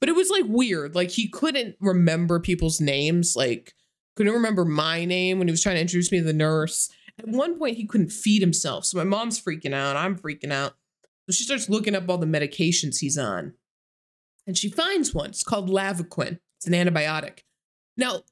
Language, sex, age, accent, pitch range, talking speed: English, female, 20-39, American, 170-270 Hz, 205 wpm